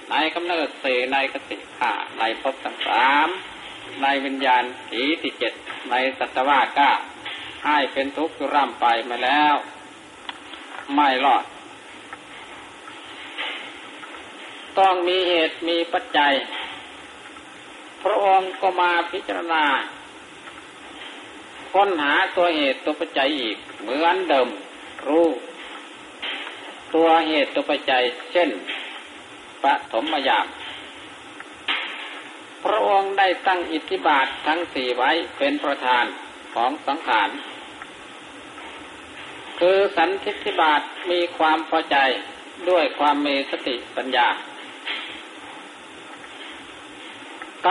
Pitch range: 150-195 Hz